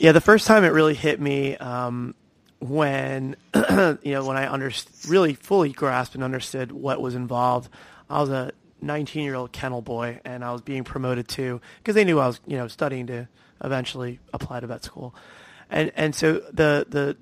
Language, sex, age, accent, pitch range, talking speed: English, male, 30-49, American, 130-155 Hz, 195 wpm